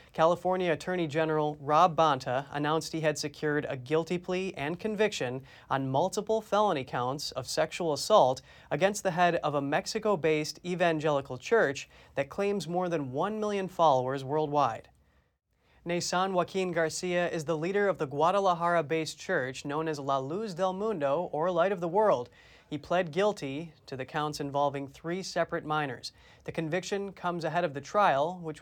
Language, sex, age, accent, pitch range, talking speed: English, male, 30-49, American, 150-185 Hz, 160 wpm